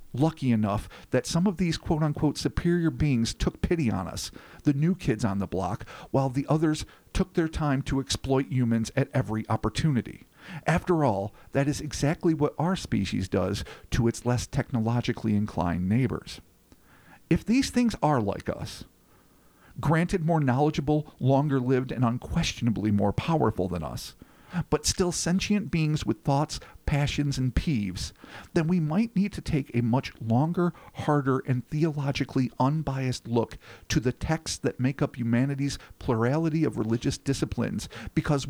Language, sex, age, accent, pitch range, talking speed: English, male, 50-69, American, 120-165 Hz, 150 wpm